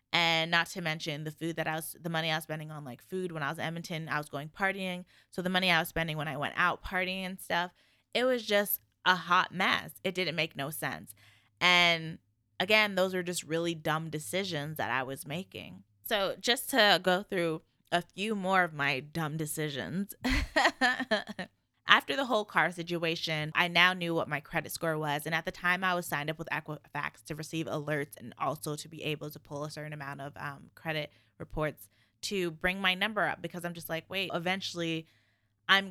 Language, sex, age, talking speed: English, female, 20-39, 210 wpm